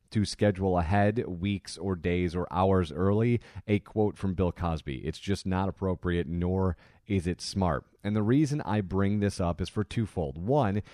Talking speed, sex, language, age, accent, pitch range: 180 wpm, male, English, 30-49, American, 90-105 Hz